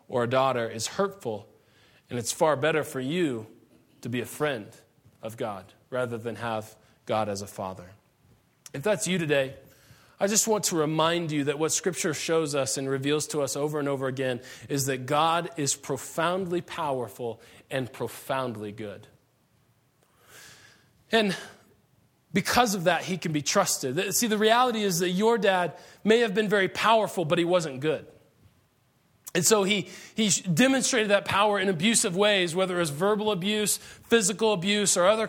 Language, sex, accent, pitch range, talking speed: English, male, American, 140-225 Hz, 165 wpm